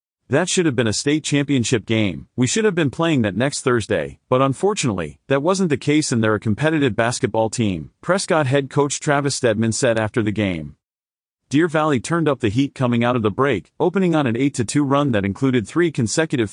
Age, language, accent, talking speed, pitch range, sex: 40-59, English, American, 205 wpm, 110-150 Hz, male